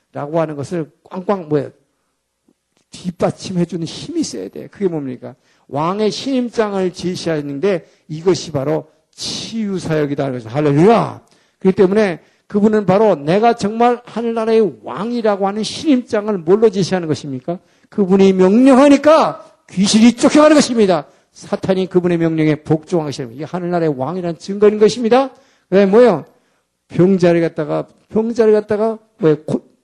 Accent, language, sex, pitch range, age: native, Korean, male, 165-220 Hz, 50-69